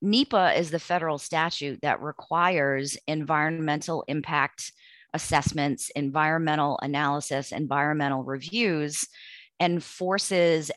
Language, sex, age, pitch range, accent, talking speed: English, female, 30-49, 140-175 Hz, American, 90 wpm